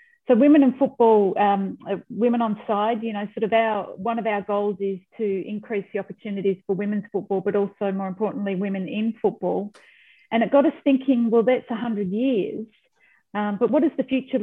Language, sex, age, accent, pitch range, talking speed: English, female, 40-59, Australian, 200-240 Hz, 195 wpm